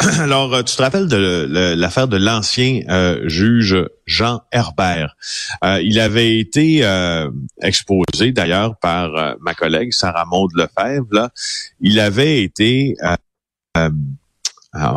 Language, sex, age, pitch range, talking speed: French, male, 40-59, 90-125 Hz, 125 wpm